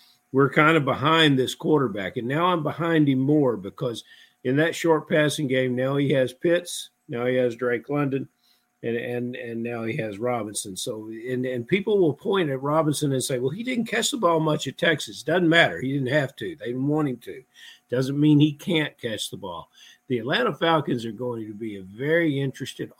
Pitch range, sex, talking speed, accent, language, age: 120-155 Hz, male, 210 wpm, American, English, 50-69